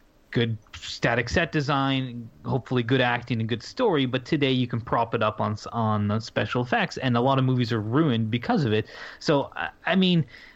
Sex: male